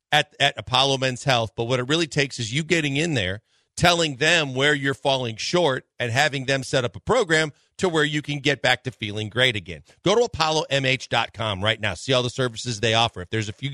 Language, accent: English, American